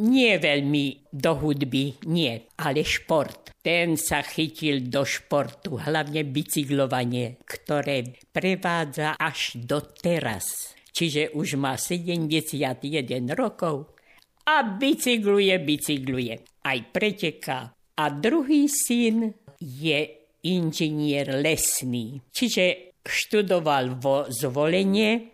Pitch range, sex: 140-195 Hz, female